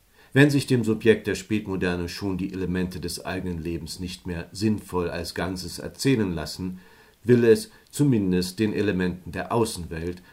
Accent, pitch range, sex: German, 90-115 Hz, male